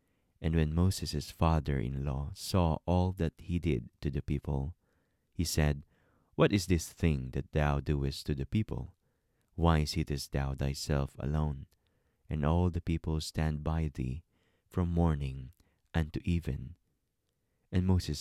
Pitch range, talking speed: 70-85 Hz, 140 wpm